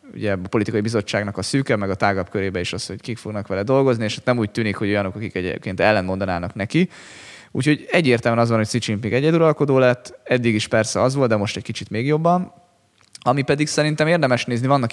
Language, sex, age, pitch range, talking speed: Hungarian, male, 20-39, 100-125 Hz, 215 wpm